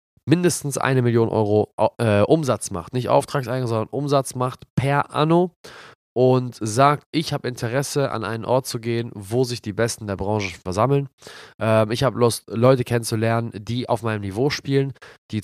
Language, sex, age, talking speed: German, male, 20-39, 165 wpm